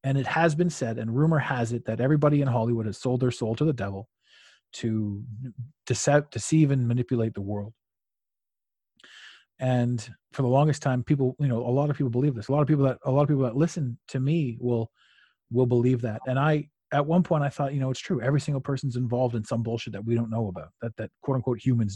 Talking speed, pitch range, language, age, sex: 235 wpm, 115-140 Hz, English, 30-49, male